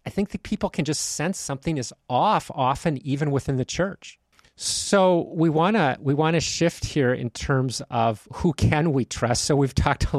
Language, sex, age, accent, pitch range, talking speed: English, male, 40-59, American, 125-150 Hz, 195 wpm